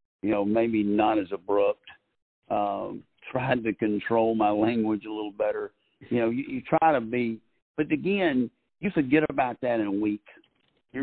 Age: 50-69